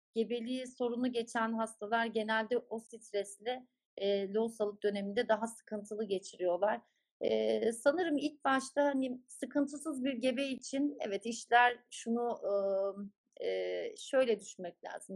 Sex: female